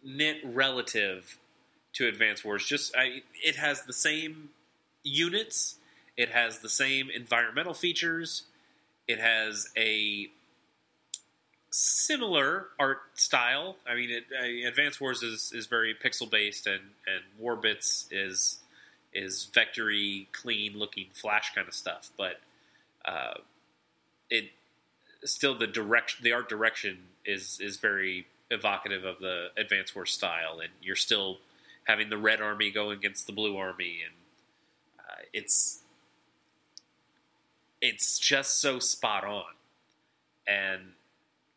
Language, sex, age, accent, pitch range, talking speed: English, male, 30-49, American, 100-130 Hz, 125 wpm